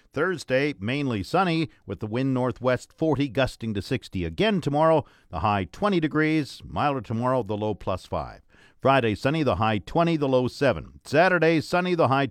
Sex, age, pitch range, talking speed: male, 50-69, 115-160 Hz, 170 wpm